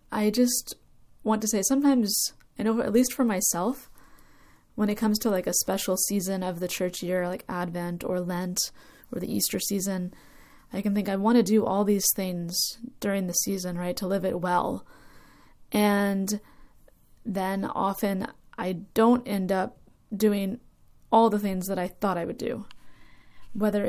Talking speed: 170 wpm